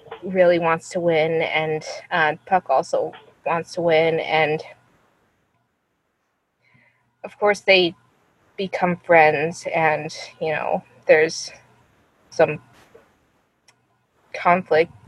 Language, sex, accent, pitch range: English, female, American, 165-190 Hz